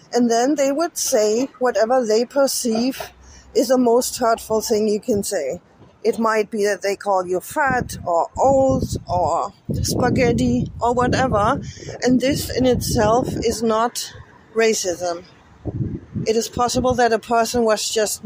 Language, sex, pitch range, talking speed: English, female, 195-235 Hz, 150 wpm